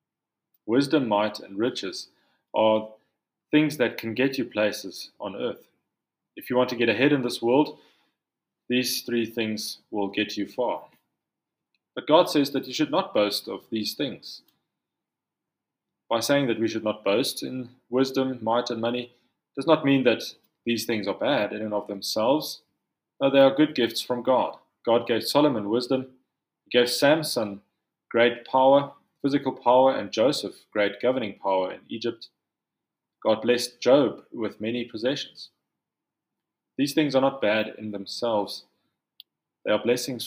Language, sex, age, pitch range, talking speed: English, male, 30-49, 110-130 Hz, 155 wpm